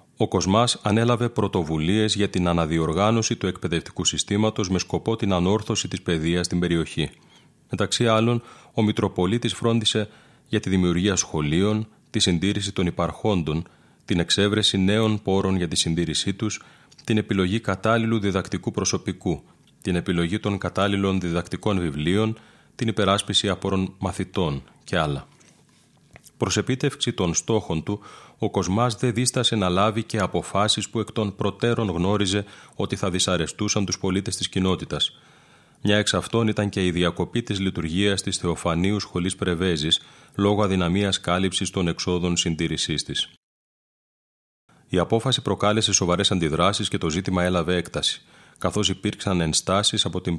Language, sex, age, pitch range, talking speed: Greek, male, 30-49, 90-105 Hz, 130 wpm